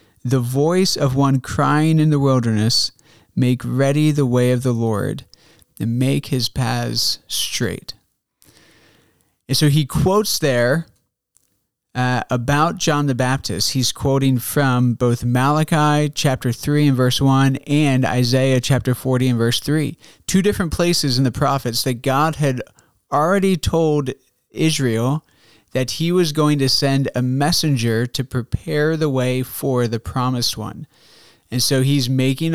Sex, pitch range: male, 125-155 Hz